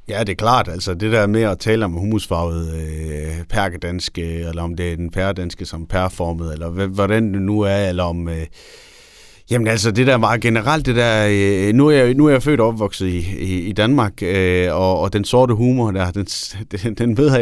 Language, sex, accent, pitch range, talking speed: Danish, male, native, 90-115 Hz, 215 wpm